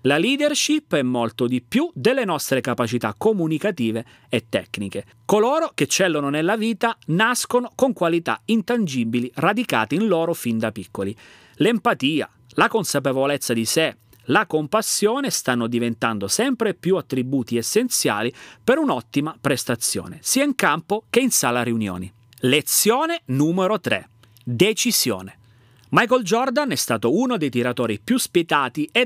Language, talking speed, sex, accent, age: Italian, 130 wpm, male, native, 30-49